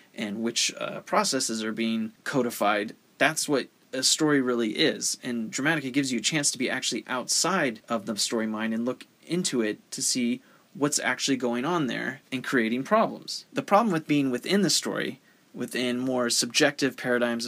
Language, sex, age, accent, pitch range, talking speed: English, male, 30-49, American, 115-140 Hz, 180 wpm